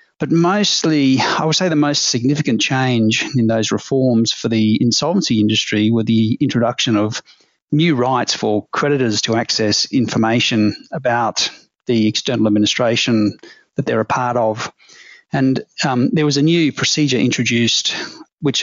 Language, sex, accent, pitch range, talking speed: English, male, Australian, 115-145 Hz, 145 wpm